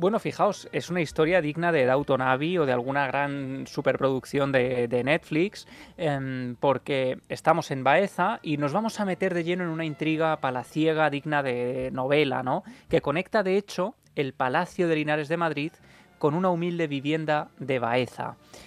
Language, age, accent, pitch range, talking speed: Spanish, 20-39, Spanish, 135-165 Hz, 165 wpm